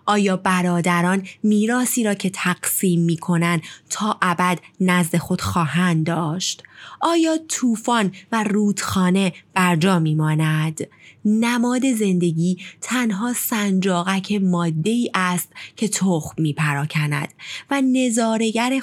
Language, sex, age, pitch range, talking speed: Persian, female, 20-39, 170-225 Hz, 100 wpm